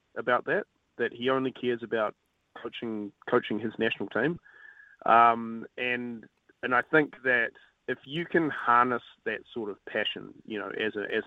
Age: 30-49